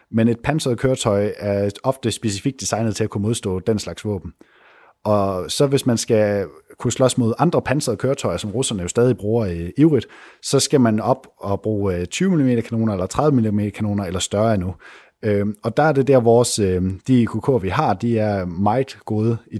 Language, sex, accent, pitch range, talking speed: Danish, male, native, 100-120 Hz, 205 wpm